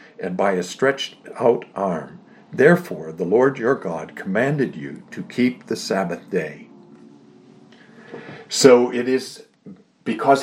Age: 60-79